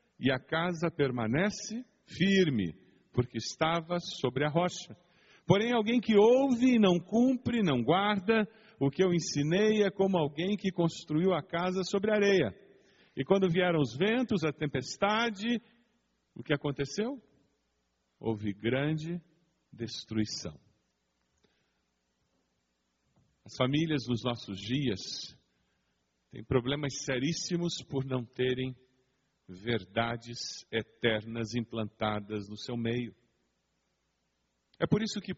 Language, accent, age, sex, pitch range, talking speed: English, Brazilian, 50-69, male, 120-190 Hz, 110 wpm